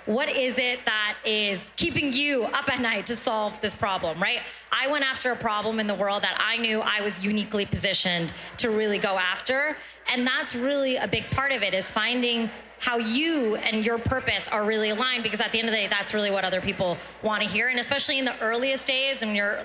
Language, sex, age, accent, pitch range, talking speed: English, female, 30-49, American, 215-270 Hz, 230 wpm